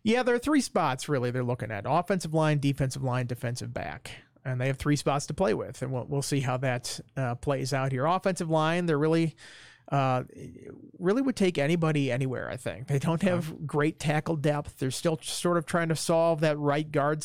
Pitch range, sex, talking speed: 130-155 Hz, male, 210 wpm